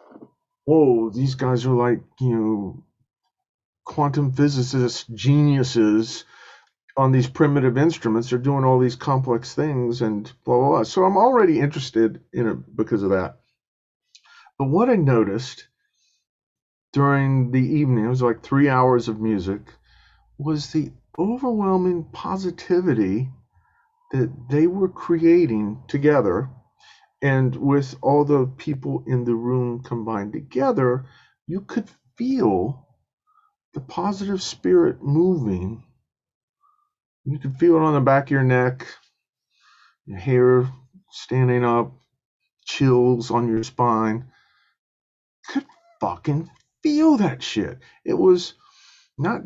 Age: 50-69